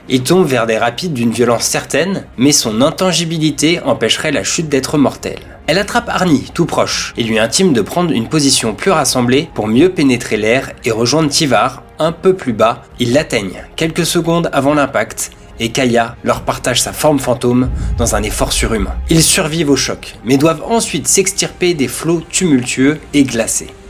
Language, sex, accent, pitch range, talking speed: French, male, French, 115-160 Hz, 180 wpm